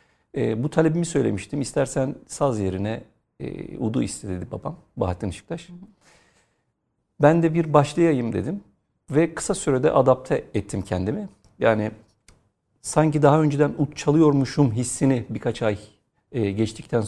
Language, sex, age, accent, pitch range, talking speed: Turkish, male, 50-69, native, 105-150 Hz, 115 wpm